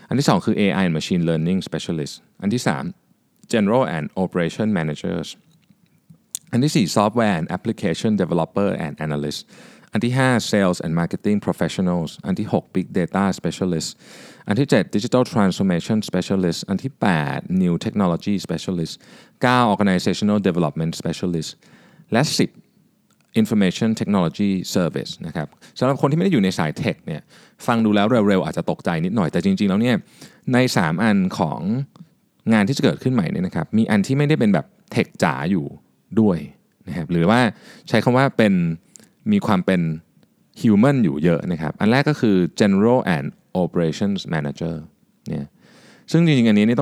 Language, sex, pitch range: Thai, male, 90-130 Hz